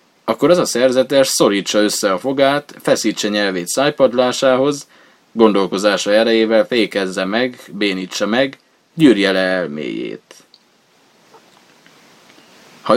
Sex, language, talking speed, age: male, Hungarian, 95 wpm, 20-39